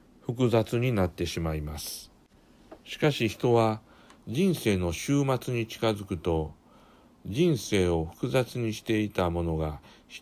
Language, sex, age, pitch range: Japanese, male, 60-79, 90-120 Hz